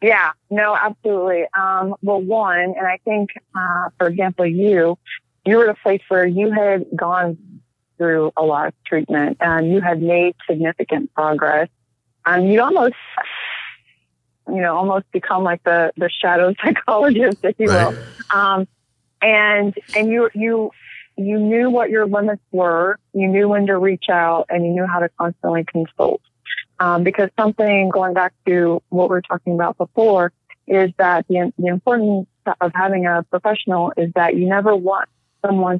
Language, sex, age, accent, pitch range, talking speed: English, female, 30-49, American, 165-195 Hz, 170 wpm